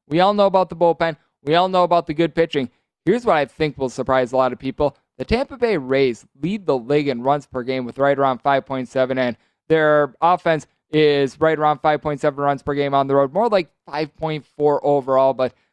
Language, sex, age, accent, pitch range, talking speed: English, male, 20-39, American, 140-170 Hz, 215 wpm